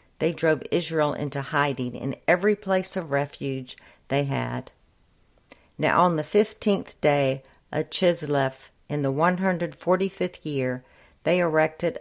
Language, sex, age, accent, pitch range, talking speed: English, female, 50-69, American, 140-170 Hz, 135 wpm